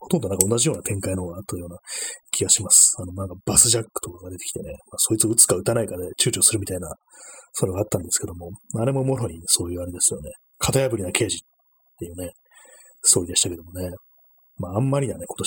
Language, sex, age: Japanese, male, 30-49